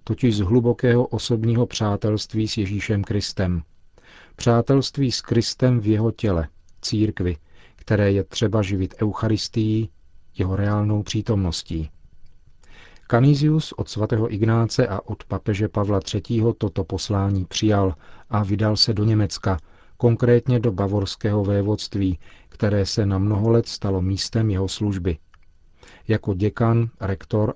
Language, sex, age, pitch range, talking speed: Czech, male, 40-59, 95-115 Hz, 120 wpm